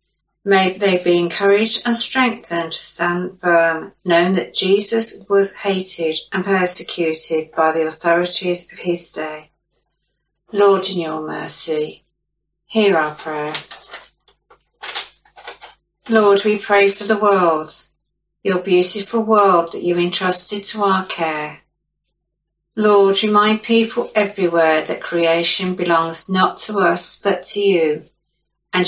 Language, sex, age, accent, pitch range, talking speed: English, female, 60-79, British, 170-200 Hz, 120 wpm